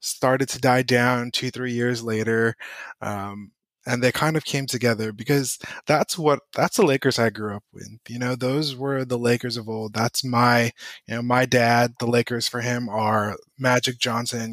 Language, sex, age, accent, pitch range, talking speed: English, male, 20-39, American, 115-130 Hz, 190 wpm